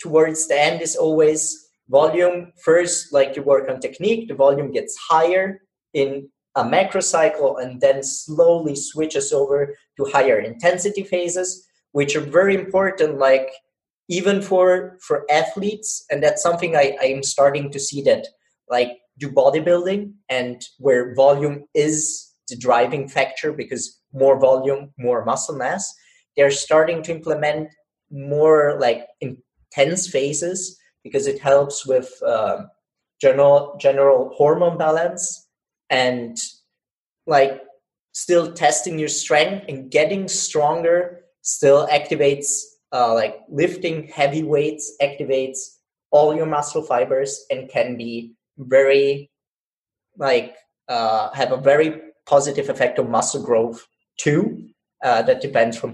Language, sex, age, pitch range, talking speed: English, male, 30-49, 140-175 Hz, 130 wpm